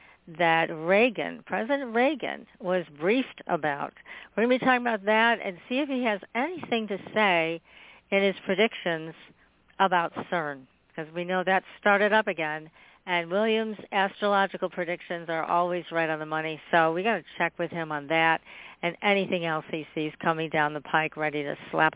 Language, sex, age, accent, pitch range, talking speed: English, female, 50-69, American, 170-210 Hz, 180 wpm